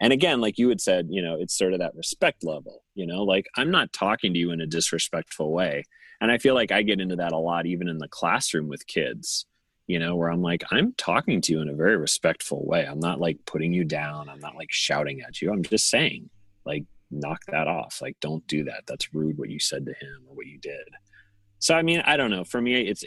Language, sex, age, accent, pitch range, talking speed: English, male, 30-49, American, 85-110 Hz, 260 wpm